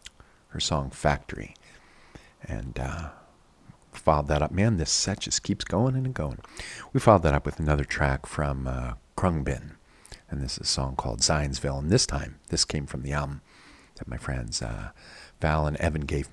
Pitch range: 70-100 Hz